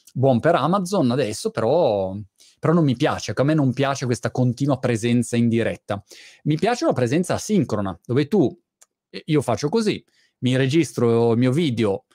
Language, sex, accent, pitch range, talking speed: Italian, male, native, 120-165 Hz, 165 wpm